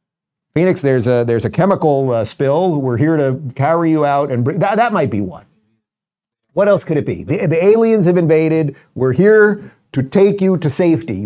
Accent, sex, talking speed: American, male, 205 wpm